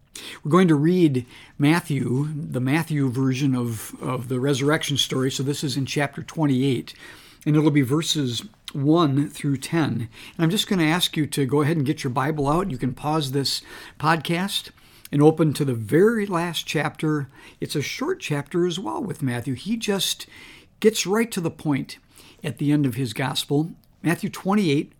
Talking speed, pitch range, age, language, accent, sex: 180 wpm, 135-180 Hz, 50-69, English, American, male